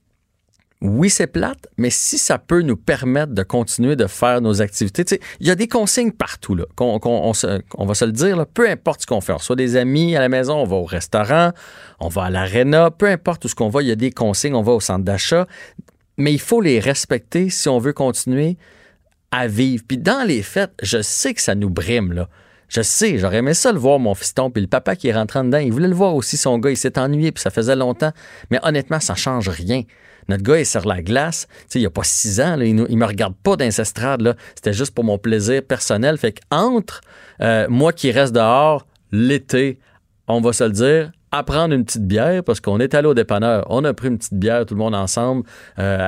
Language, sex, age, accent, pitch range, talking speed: French, male, 40-59, Canadian, 105-145 Hz, 245 wpm